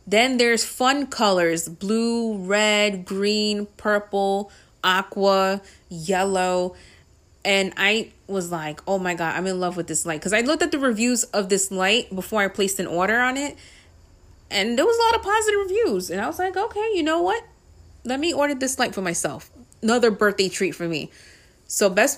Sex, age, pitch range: female, 30-49, 175-225 Hz